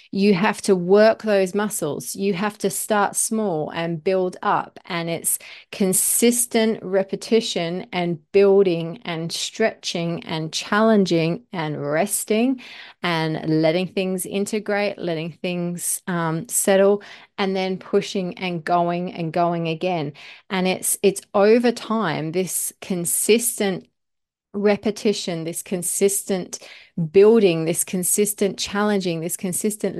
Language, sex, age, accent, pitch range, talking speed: English, female, 30-49, Australian, 170-205 Hz, 115 wpm